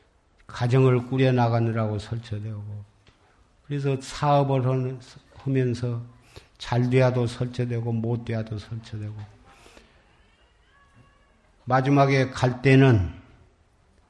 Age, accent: 50-69, native